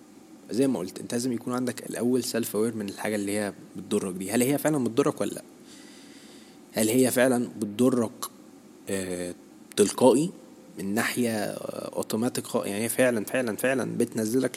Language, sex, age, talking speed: Arabic, male, 20-39, 150 wpm